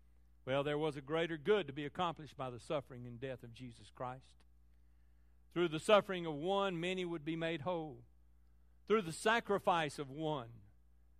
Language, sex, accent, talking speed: English, male, American, 170 wpm